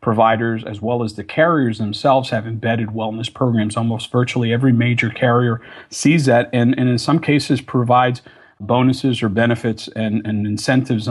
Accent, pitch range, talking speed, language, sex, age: American, 115-140 Hz, 160 wpm, English, male, 40-59